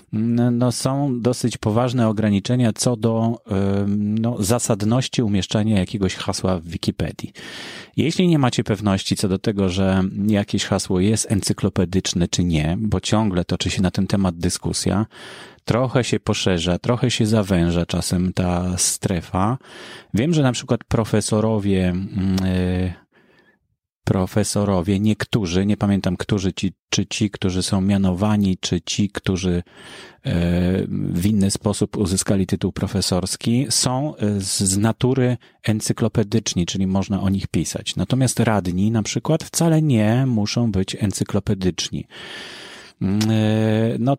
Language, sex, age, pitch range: Polish, male, 30-49, 95-115 Hz